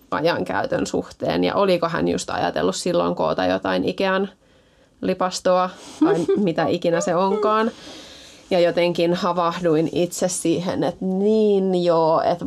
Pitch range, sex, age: 175-210 Hz, female, 20-39